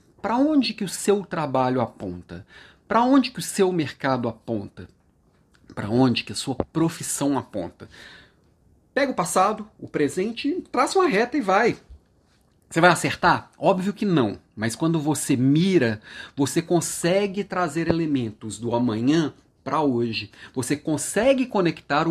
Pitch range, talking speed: 125-185 Hz, 140 wpm